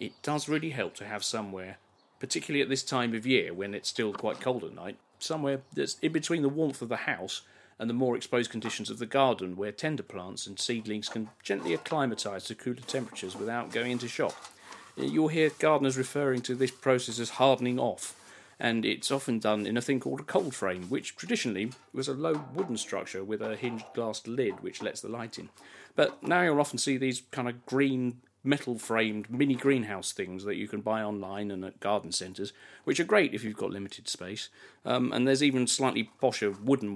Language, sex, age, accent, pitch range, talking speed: English, male, 40-59, British, 100-130 Hz, 210 wpm